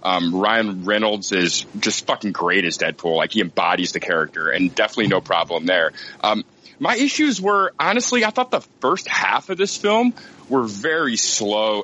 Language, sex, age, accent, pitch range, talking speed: English, male, 30-49, American, 95-150 Hz, 175 wpm